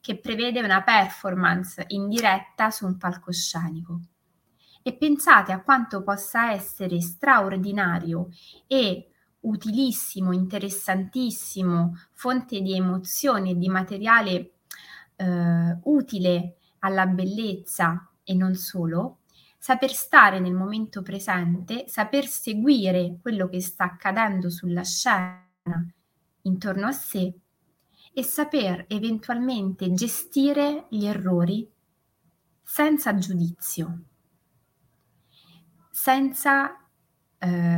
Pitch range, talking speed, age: 180-235 Hz, 90 wpm, 20-39